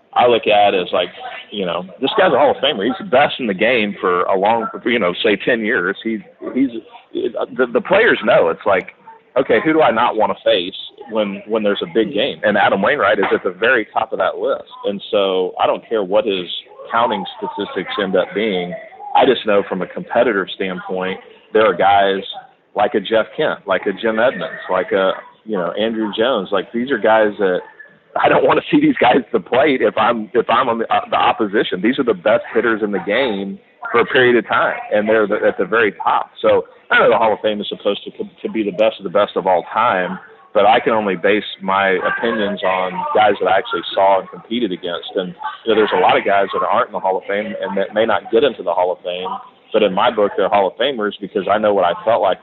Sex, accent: male, American